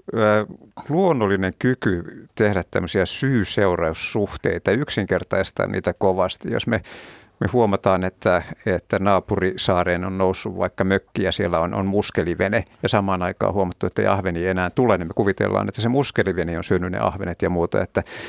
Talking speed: 145 wpm